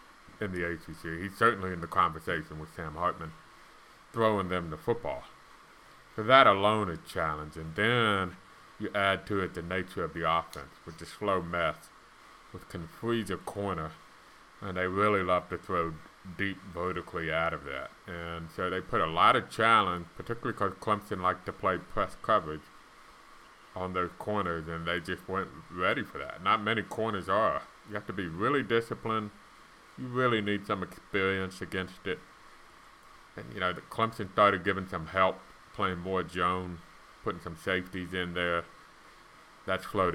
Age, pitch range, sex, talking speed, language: 30-49, 85-100 Hz, male, 165 wpm, English